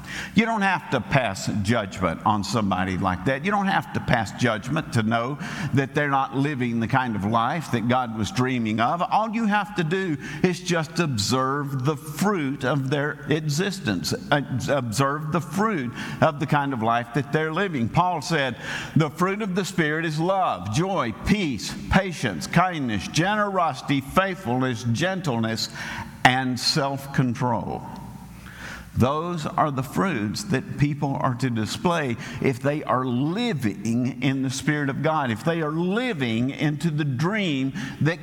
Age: 50-69